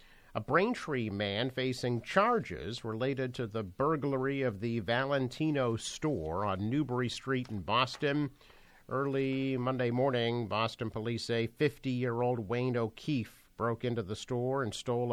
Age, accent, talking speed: 50-69, American, 130 wpm